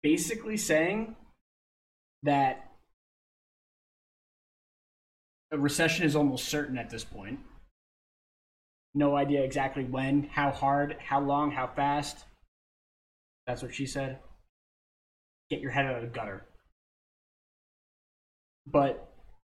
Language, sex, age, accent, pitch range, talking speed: English, male, 20-39, American, 100-145 Hz, 100 wpm